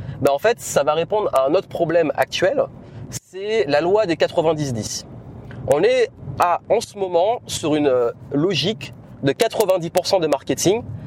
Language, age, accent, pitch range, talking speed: French, 30-49, French, 135-180 Hz, 155 wpm